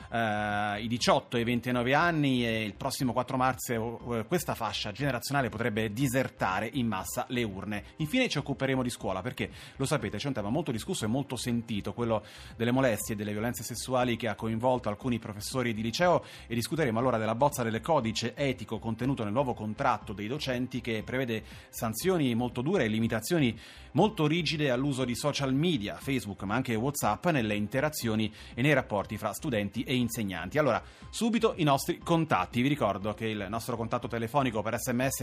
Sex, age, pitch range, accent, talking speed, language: male, 30-49, 110-135 Hz, native, 175 wpm, Italian